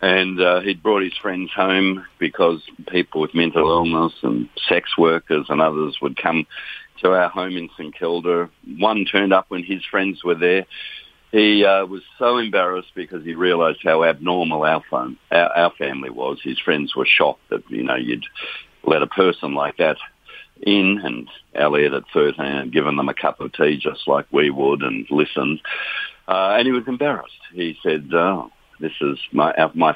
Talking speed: 185 wpm